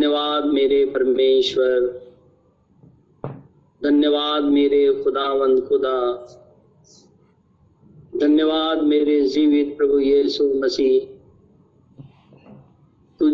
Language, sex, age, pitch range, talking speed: Hindi, male, 50-69, 140-175 Hz, 70 wpm